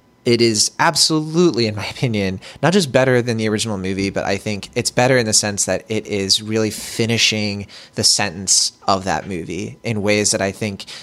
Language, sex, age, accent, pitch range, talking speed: English, male, 20-39, American, 100-120 Hz, 195 wpm